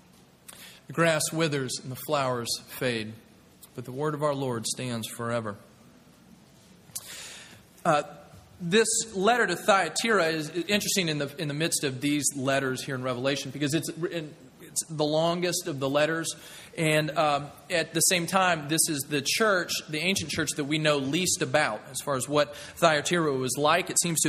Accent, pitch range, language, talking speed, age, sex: American, 140-175 Hz, English, 170 wpm, 30-49, male